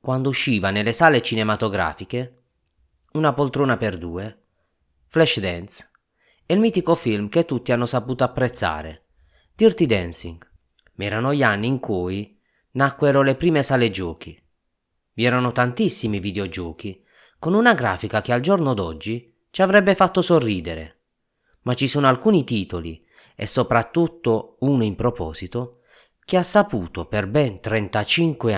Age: 30-49